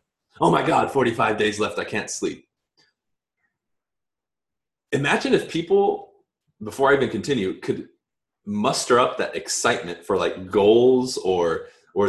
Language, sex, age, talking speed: English, male, 20-39, 130 wpm